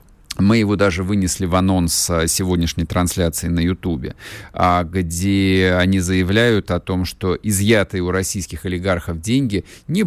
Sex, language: male, Russian